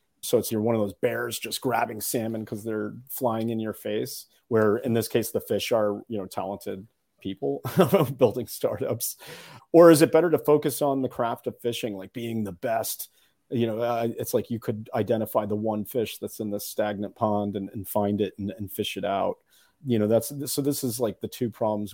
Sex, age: male, 40-59